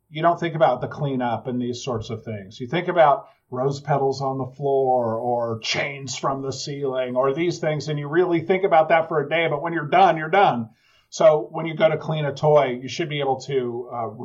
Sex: male